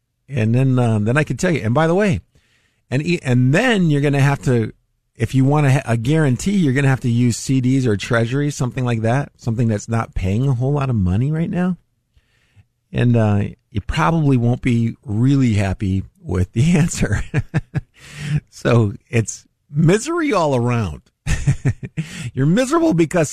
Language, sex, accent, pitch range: English, male, American, 110-145 Hz